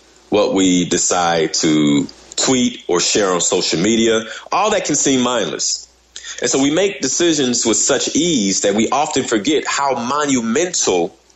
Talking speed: 155 wpm